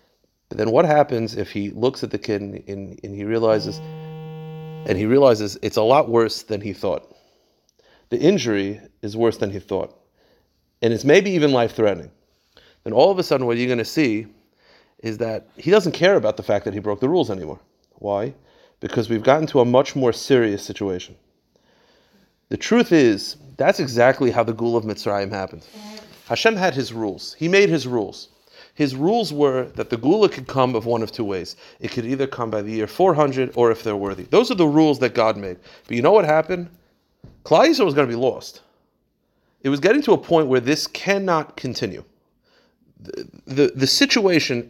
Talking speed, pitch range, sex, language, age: 195 wpm, 110-155 Hz, male, English, 40-59